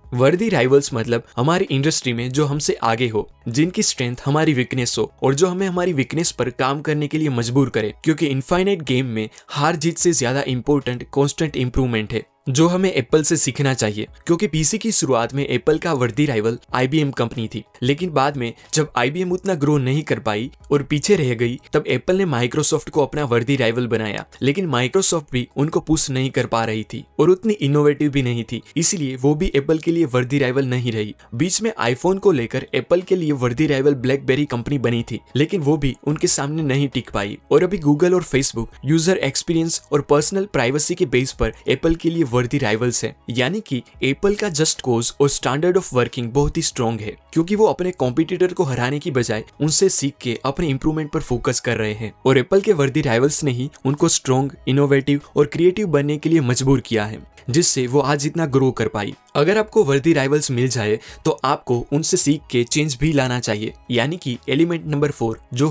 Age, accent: 20-39, native